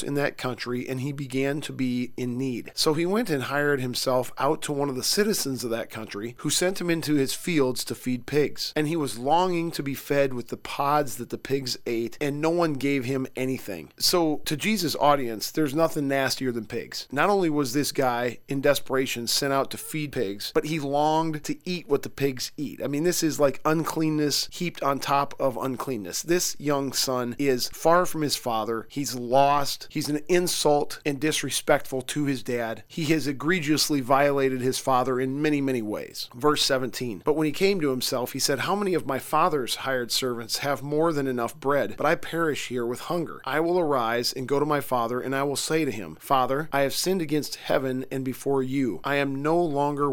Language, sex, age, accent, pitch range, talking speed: English, male, 40-59, American, 130-150 Hz, 215 wpm